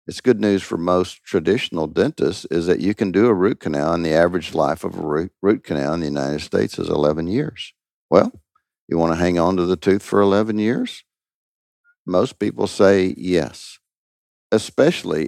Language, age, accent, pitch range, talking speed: English, 50-69, American, 80-100 Hz, 185 wpm